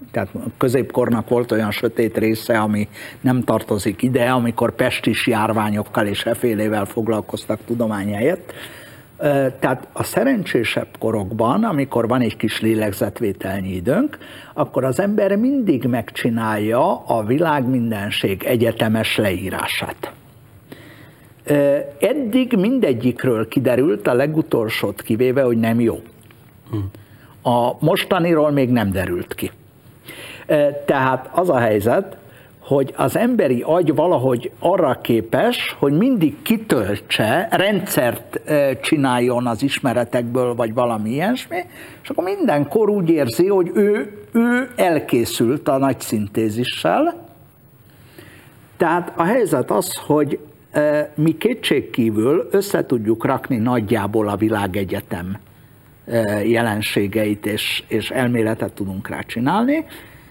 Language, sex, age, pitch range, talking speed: Hungarian, male, 50-69, 110-150 Hz, 105 wpm